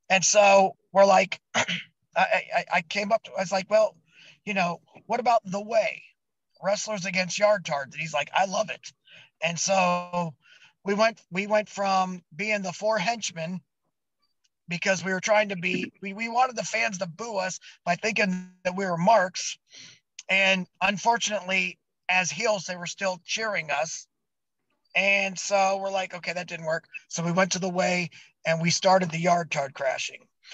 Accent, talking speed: American, 180 wpm